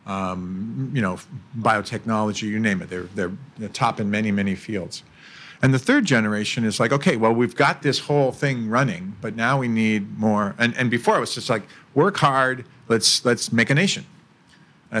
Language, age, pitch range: Thai, 50-69, 105-135 Hz